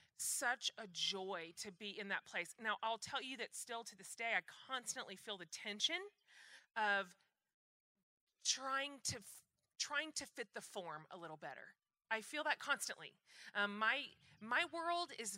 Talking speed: 165 wpm